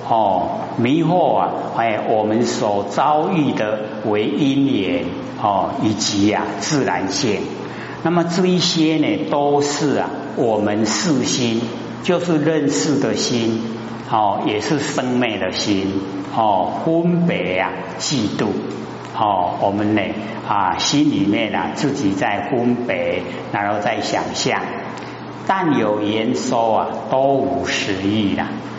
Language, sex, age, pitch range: Chinese, male, 50-69, 105-140 Hz